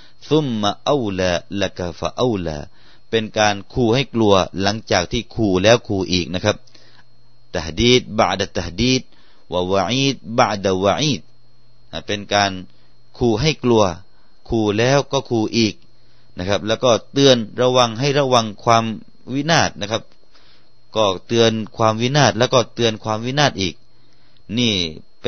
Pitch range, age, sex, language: 90-120 Hz, 30-49, male, Thai